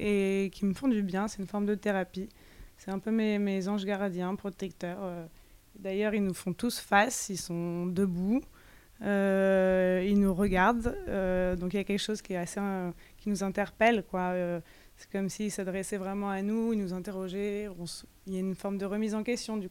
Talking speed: 215 wpm